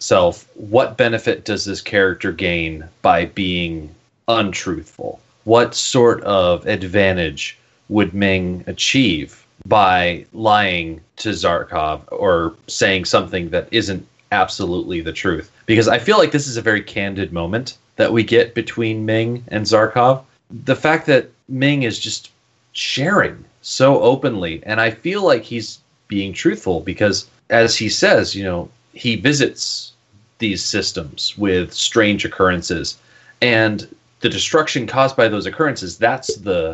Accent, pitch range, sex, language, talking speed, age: American, 95-120 Hz, male, English, 135 wpm, 30-49